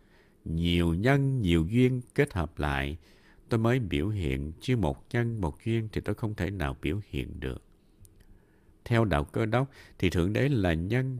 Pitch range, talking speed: 85-120 Hz, 175 wpm